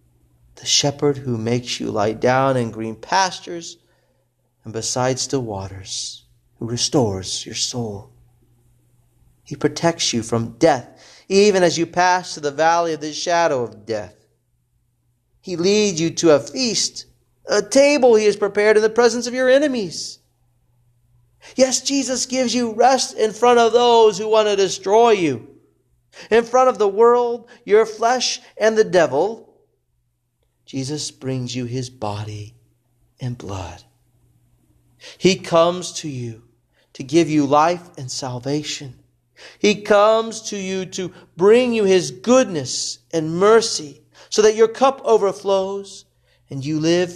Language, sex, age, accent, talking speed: English, male, 30-49, American, 145 wpm